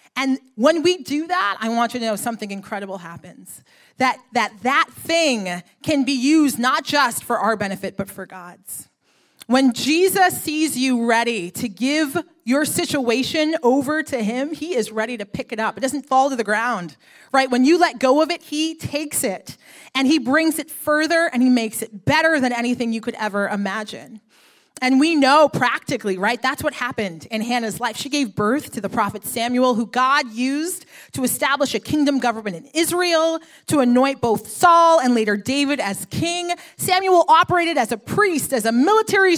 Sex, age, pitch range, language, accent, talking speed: female, 30-49, 235-320 Hz, English, American, 190 wpm